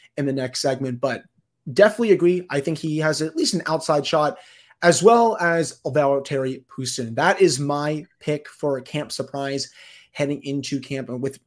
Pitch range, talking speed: 140-175 Hz, 175 wpm